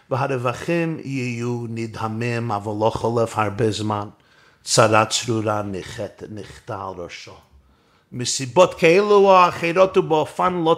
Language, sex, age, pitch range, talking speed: Hebrew, male, 50-69, 115-175 Hz, 100 wpm